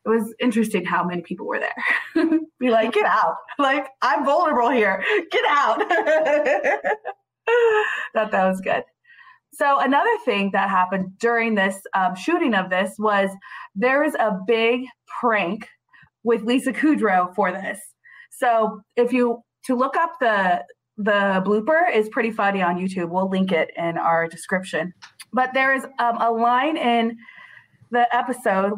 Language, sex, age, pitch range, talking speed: English, female, 20-39, 195-255 Hz, 150 wpm